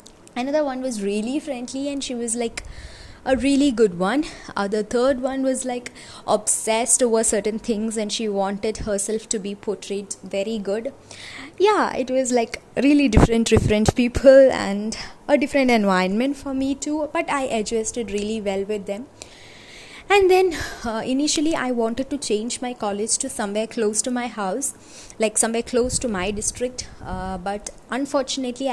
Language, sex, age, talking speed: Malayalam, female, 20-39, 165 wpm